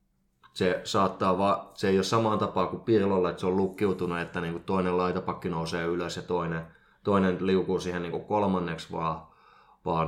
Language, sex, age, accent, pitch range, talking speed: Finnish, male, 20-39, native, 85-100 Hz, 185 wpm